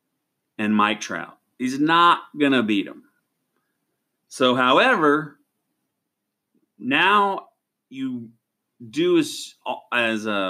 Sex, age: male, 30-49